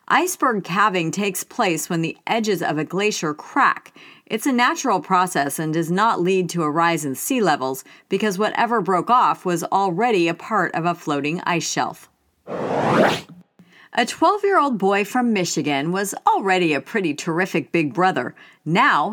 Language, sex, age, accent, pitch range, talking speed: English, female, 40-59, American, 160-220 Hz, 160 wpm